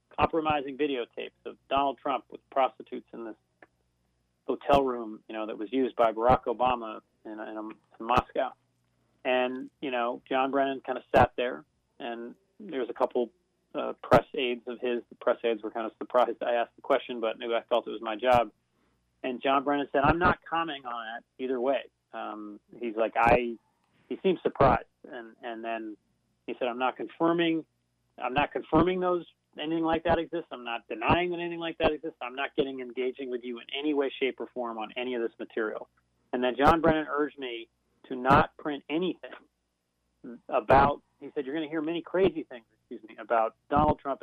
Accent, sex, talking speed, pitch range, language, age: American, male, 195 wpm, 115-140 Hz, English, 30-49